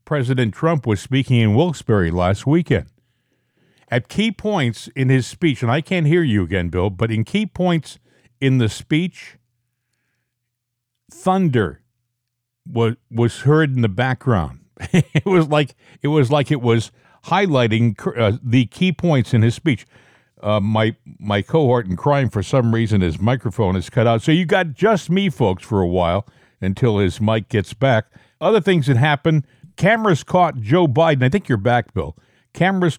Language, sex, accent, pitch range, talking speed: English, male, American, 115-155 Hz, 170 wpm